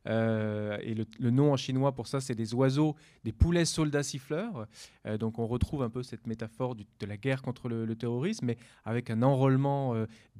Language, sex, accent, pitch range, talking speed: French, male, French, 110-130 Hz, 215 wpm